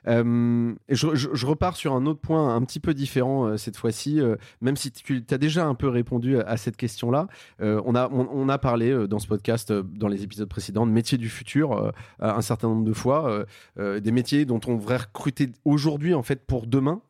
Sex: male